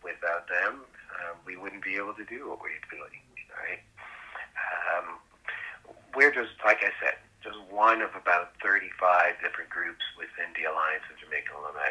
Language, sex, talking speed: English, male, 160 wpm